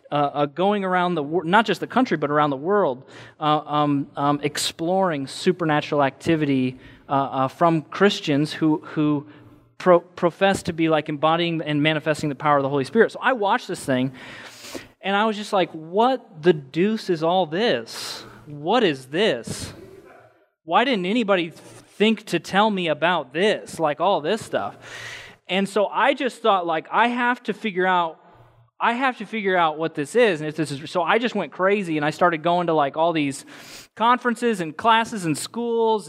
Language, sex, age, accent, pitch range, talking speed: English, male, 20-39, American, 145-195 Hz, 190 wpm